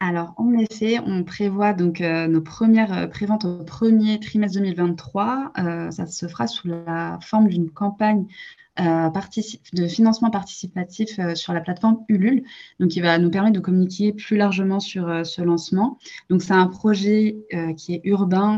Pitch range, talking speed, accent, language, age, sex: 175-210 Hz, 175 wpm, French, French, 20-39, female